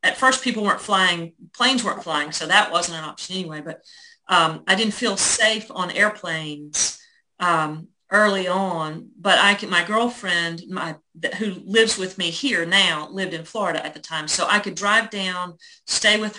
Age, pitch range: 40-59, 170-210 Hz